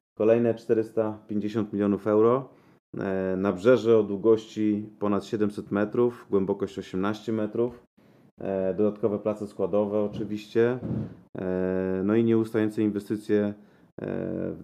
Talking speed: 95 wpm